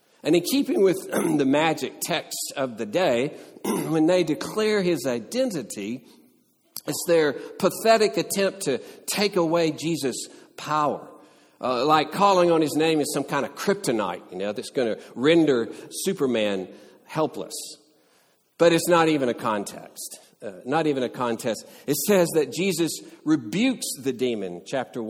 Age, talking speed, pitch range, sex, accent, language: 50-69, 150 wpm, 120-165 Hz, male, American, English